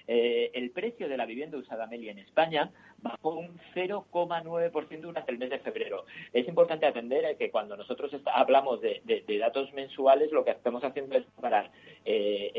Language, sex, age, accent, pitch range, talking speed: Spanish, male, 50-69, Spanish, 130-175 Hz, 175 wpm